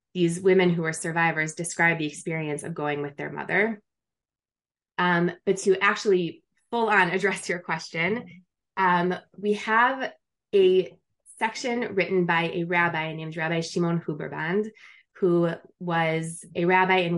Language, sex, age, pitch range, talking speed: English, female, 20-39, 160-185 Hz, 140 wpm